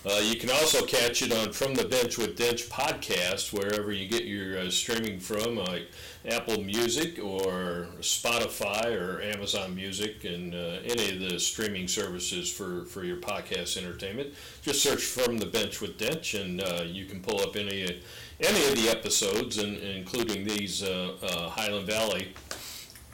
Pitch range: 95-130 Hz